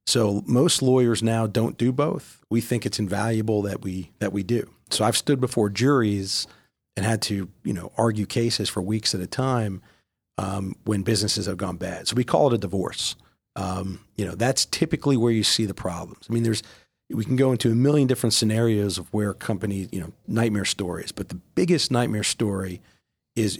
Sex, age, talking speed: male, 40-59, 200 wpm